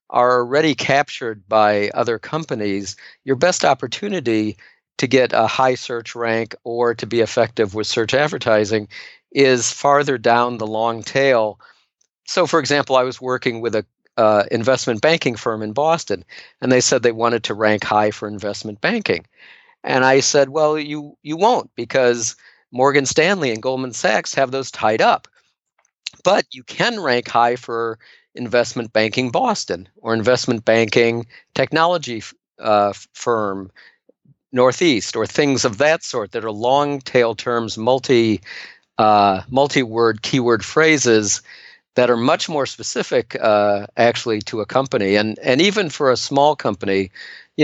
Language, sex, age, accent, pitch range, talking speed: English, male, 50-69, American, 110-135 Hz, 150 wpm